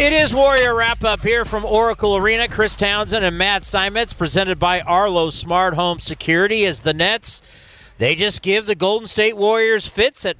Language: English